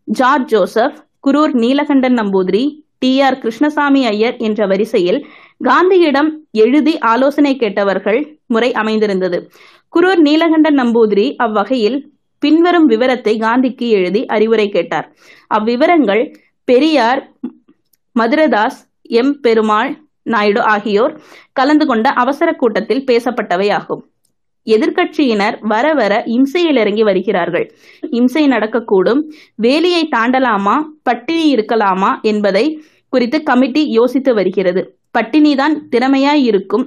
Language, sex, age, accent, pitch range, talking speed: Tamil, female, 20-39, native, 220-295 Hz, 95 wpm